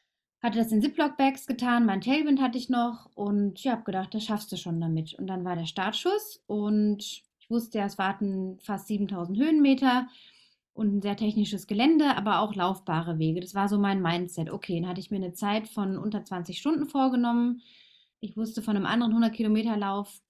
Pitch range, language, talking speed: 200-245 Hz, German, 200 wpm